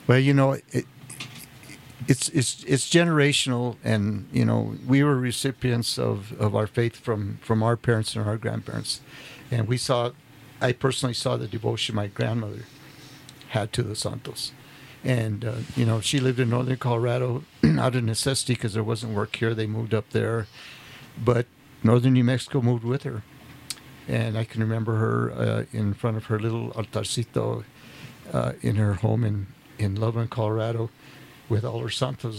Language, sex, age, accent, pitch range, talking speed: English, male, 60-79, American, 115-135 Hz, 170 wpm